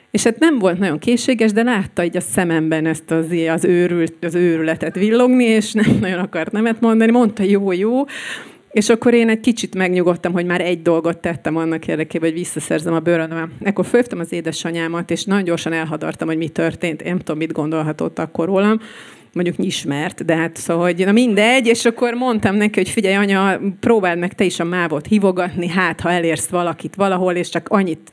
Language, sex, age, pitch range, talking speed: Hungarian, female, 30-49, 165-210 Hz, 195 wpm